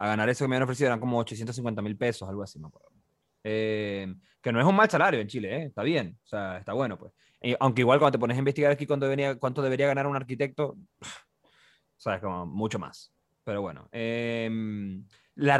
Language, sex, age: Spanish, male, 20-39